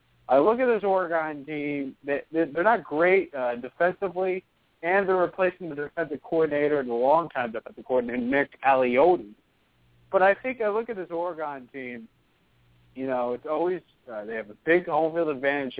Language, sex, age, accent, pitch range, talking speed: English, male, 40-59, American, 130-190 Hz, 180 wpm